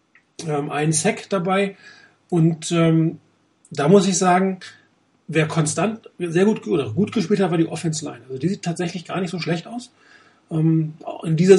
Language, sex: German, male